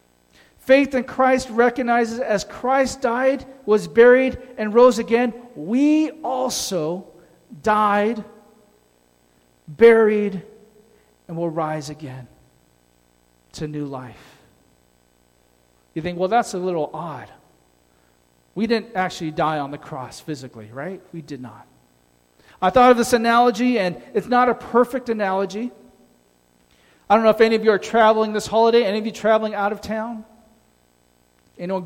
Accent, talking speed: American, 135 wpm